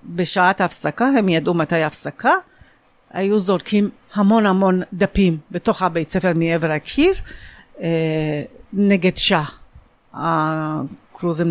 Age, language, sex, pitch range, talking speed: 50-69, Hebrew, female, 165-210 Hz, 100 wpm